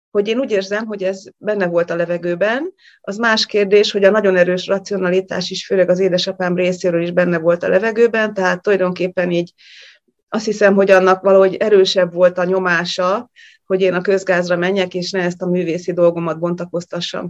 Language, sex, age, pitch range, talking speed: Hungarian, female, 30-49, 175-200 Hz, 180 wpm